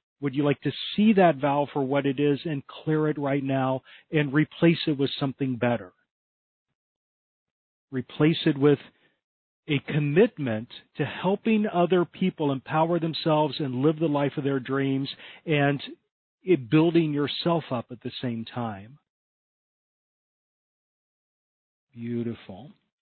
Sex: male